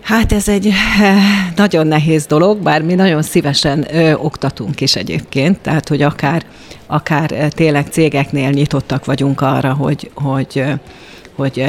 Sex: female